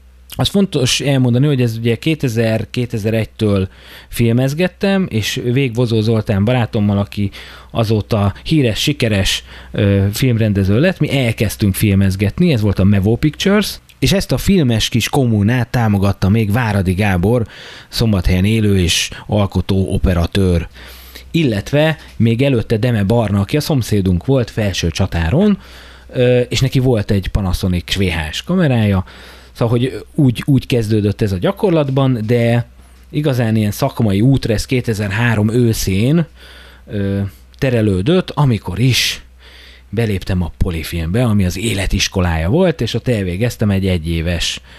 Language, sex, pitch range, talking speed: Hungarian, male, 95-130 Hz, 120 wpm